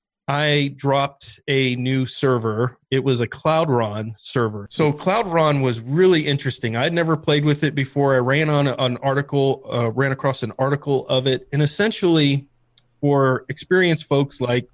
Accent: American